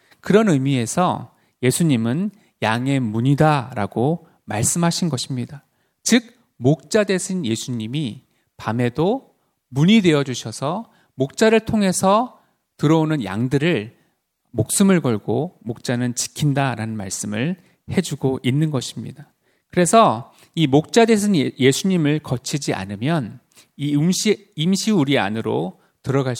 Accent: native